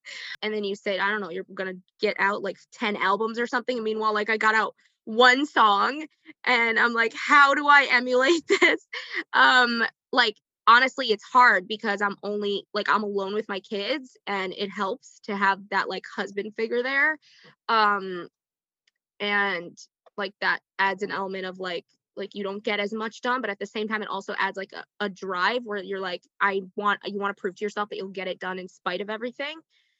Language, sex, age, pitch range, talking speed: English, female, 20-39, 200-230 Hz, 205 wpm